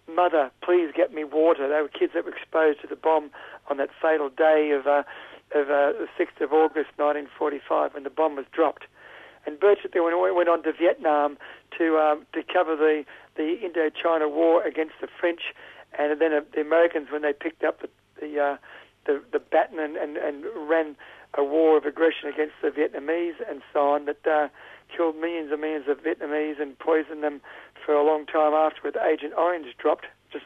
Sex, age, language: male, 60-79, English